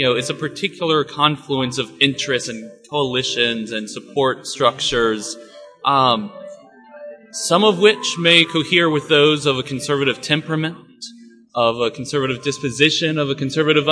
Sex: male